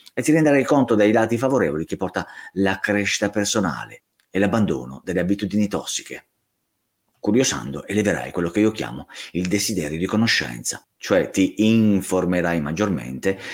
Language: Italian